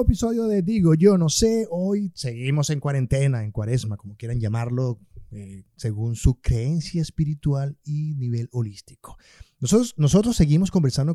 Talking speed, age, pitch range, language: 145 wpm, 30-49, 115-150 Hz, Spanish